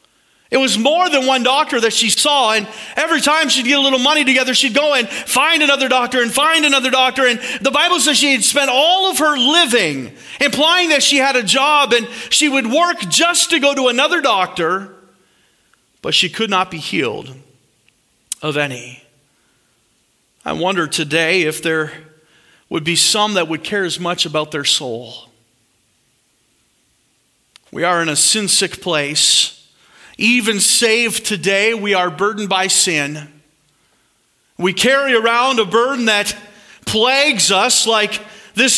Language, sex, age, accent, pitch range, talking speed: English, male, 40-59, American, 205-285 Hz, 160 wpm